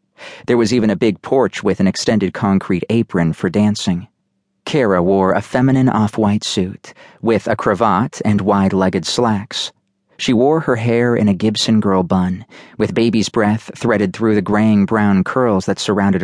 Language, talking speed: English, 165 wpm